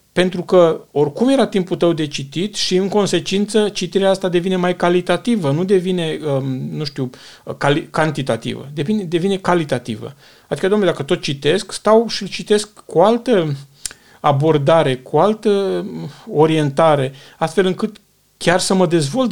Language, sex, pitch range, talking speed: Romanian, male, 140-185 Hz, 135 wpm